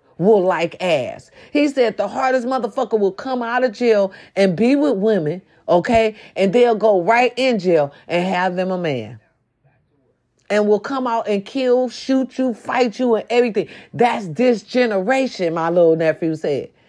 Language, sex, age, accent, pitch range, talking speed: English, female, 40-59, American, 160-220 Hz, 170 wpm